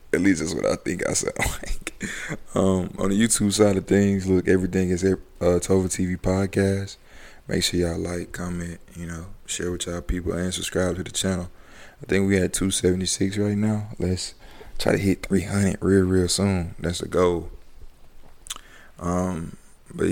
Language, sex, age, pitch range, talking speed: English, male, 20-39, 85-95 Hz, 175 wpm